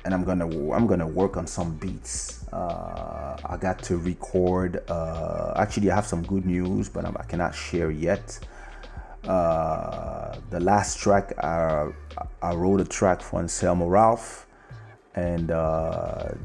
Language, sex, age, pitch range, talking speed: English, male, 30-49, 80-95 Hz, 155 wpm